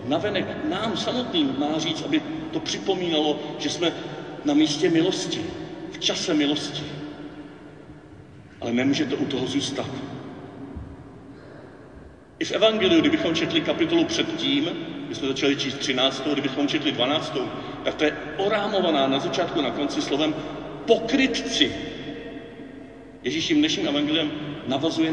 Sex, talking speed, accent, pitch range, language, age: male, 125 wpm, native, 140-205 Hz, Czech, 40-59